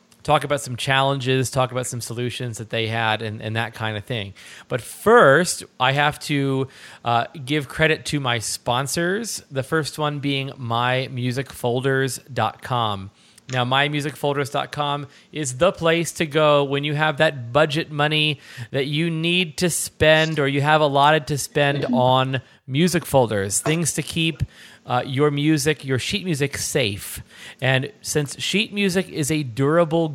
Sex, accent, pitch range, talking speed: male, American, 125-155 Hz, 155 wpm